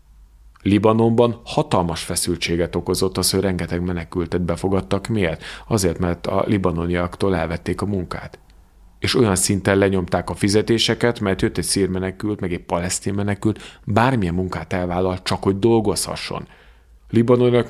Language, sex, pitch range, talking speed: Hungarian, male, 85-105 Hz, 130 wpm